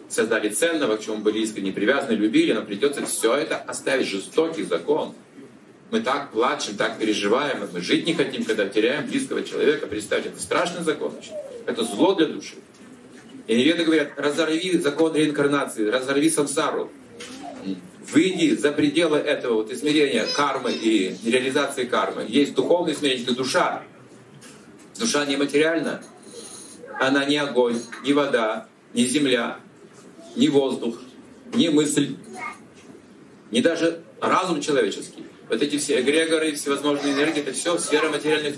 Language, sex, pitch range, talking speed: Russian, male, 140-220 Hz, 135 wpm